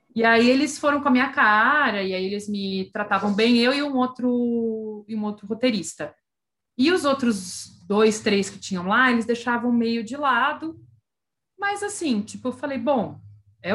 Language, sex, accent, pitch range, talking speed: Portuguese, female, Brazilian, 195-255 Hz, 180 wpm